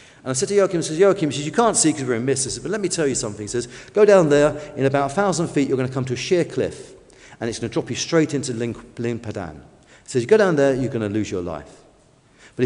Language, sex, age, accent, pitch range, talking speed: English, male, 40-59, British, 125-195 Hz, 300 wpm